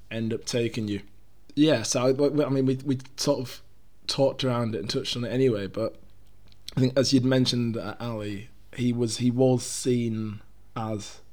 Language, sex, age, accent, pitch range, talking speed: English, male, 20-39, British, 105-125 Hz, 185 wpm